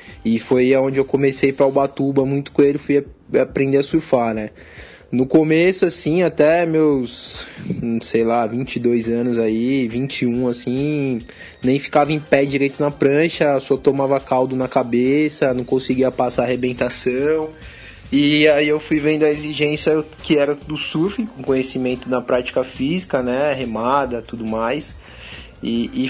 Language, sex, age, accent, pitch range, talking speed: Portuguese, male, 20-39, Brazilian, 125-145 Hz, 145 wpm